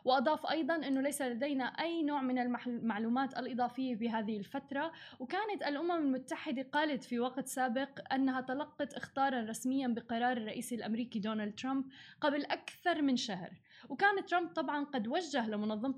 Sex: female